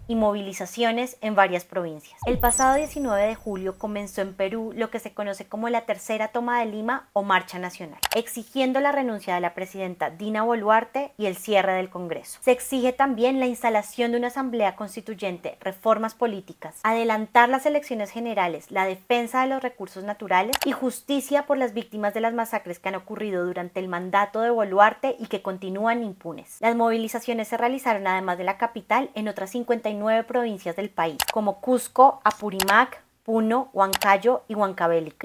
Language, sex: Spanish, female